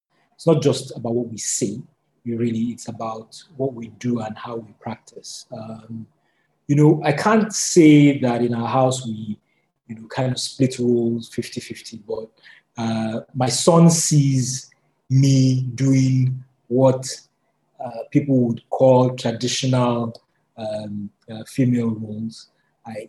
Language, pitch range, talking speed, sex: English, 115-135 Hz, 145 wpm, male